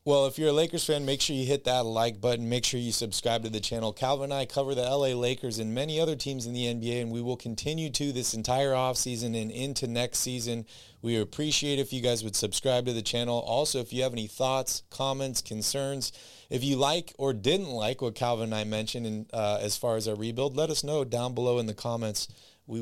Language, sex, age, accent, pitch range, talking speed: English, male, 30-49, American, 110-135 Hz, 240 wpm